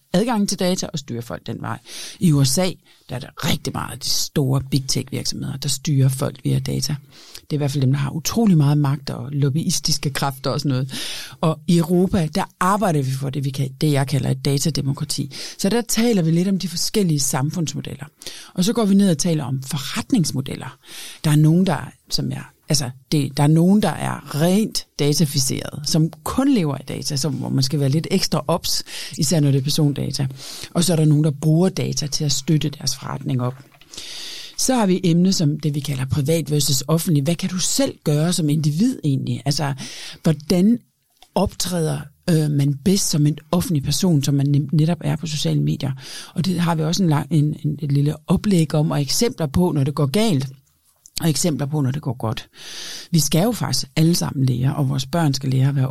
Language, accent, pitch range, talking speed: Danish, native, 140-175 Hz, 215 wpm